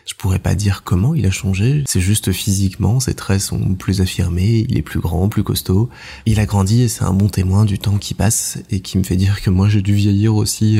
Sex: male